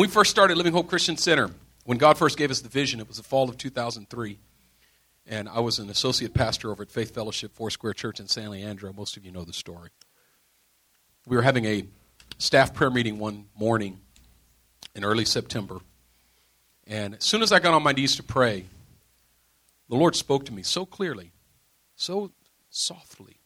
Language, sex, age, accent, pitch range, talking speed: English, male, 50-69, American, 100-125 Hz, 190 wpm